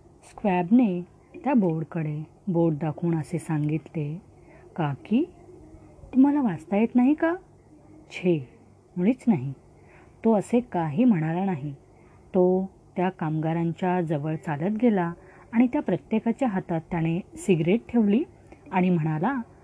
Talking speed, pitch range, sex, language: 110 wpm, 175-245 Hz, female, Marathi